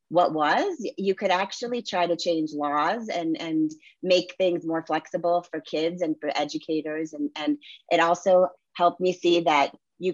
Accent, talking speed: American, 170 wpm